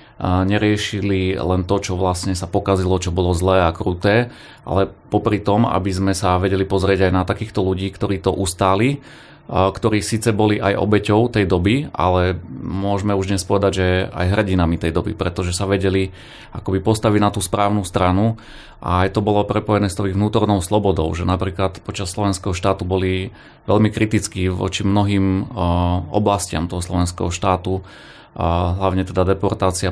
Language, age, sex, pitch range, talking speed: Slovak, 30-49, male, 90-100 Hz, 160 wpm